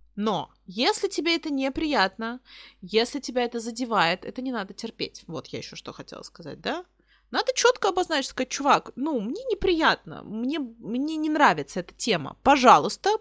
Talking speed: 160 wpm